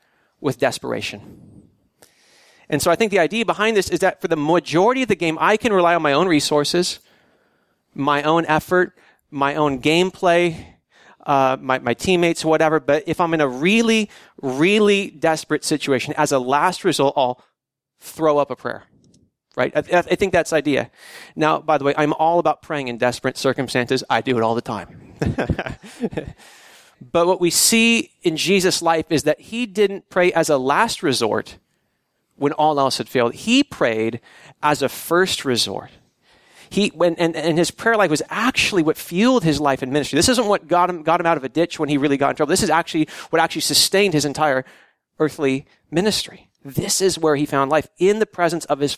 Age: 30-49